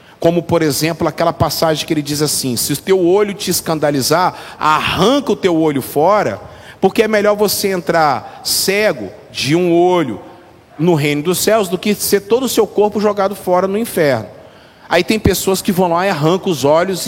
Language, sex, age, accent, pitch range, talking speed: Portuguese, male, 40-59, Brazilian, 170-225 Hz, 190 wpm